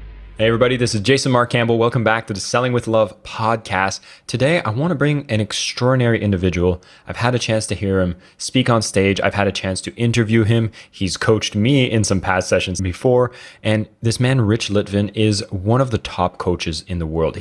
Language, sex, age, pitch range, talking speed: English, male, 20-39, 95-115 Hz, 210 wpm